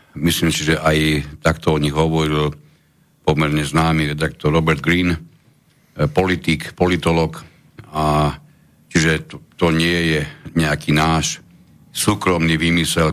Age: 60-79